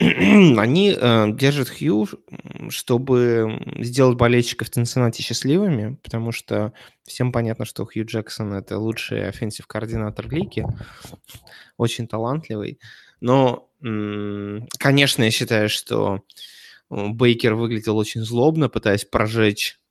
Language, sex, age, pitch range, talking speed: Russian, male, 20-39, 105-125 Hz, 105 wpm